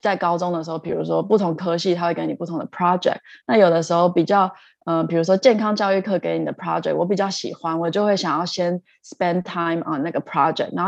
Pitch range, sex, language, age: 170-215 Hz, female, Chinese, 20-39